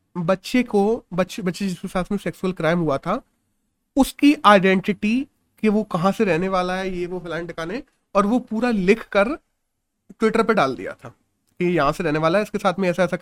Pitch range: 190-245 Hz